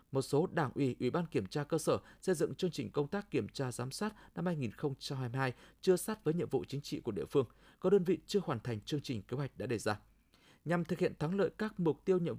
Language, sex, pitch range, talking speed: Vietnamese, male, 135-175 Hz, 260 wpm